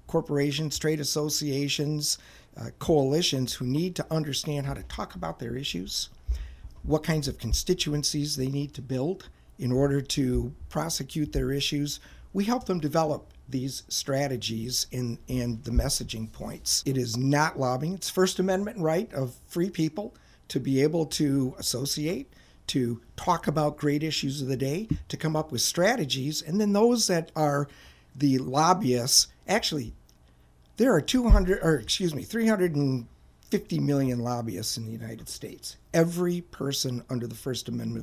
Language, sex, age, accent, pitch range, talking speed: English, male, 50-69, American, 120-155 Hz, 155 wpm